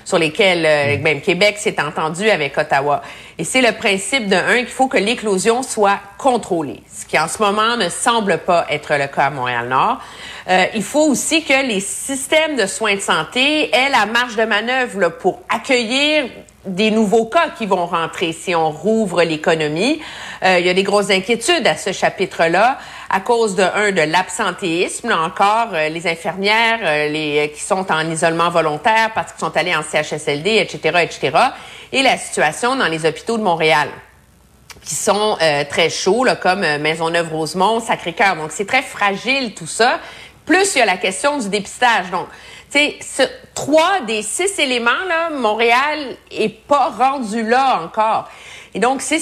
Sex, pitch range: female, 165-235 Hz